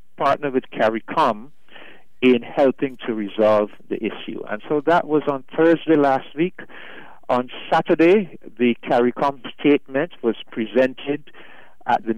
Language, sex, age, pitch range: English, male, 50-69, 110-130 Hz